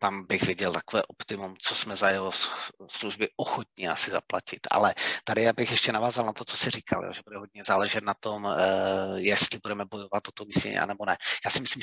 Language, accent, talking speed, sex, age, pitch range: Czech, native, 210 wpm, male, 30-49, 110-130 Hz